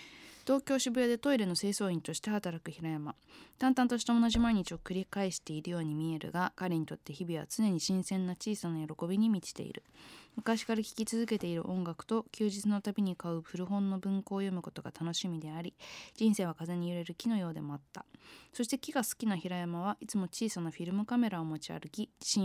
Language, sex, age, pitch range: Japanese, female, 20-39, 170-225 Hz